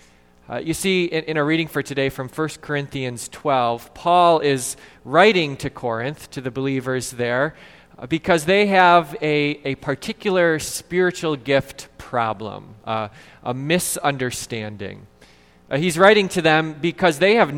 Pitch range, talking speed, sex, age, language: 145-195 Hz, 145 wpm, male, 20-39, English